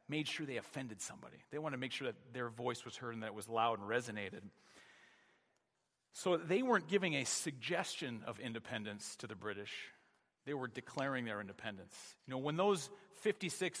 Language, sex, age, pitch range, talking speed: English, male, 40-59, 120-155 Hz, 185 wpm